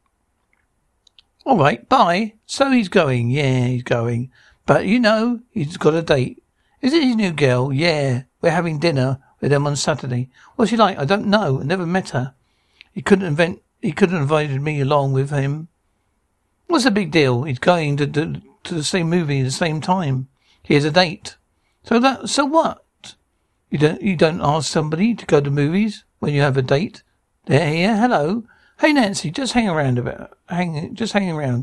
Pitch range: 140-200 Hz